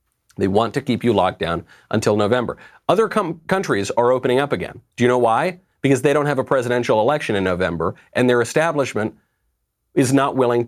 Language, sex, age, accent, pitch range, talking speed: English, male, 40-59, American, 115-165 Hz, 190 wpm